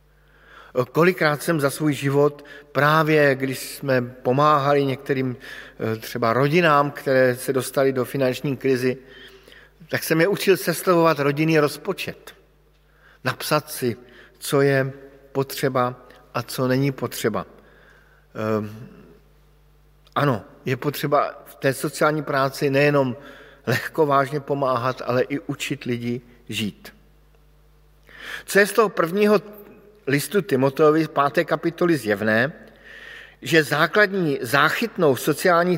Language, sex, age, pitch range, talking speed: Slovak, male, 50-69, 130-160 Hz, 110 wpm